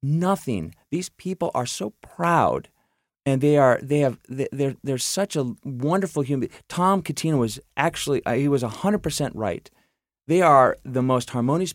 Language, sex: English, male